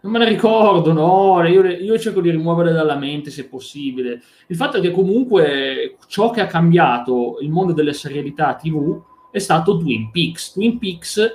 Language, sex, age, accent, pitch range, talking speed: Italian, male, 30-49, native, 135-175 Hz, 180 wpm